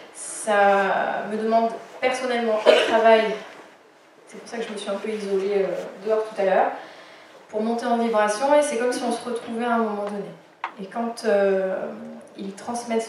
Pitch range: 200-235 Hz